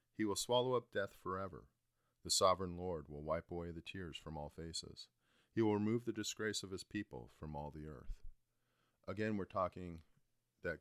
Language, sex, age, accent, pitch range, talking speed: English, male, 40-59, American, 75-95 Hz, 185 wpm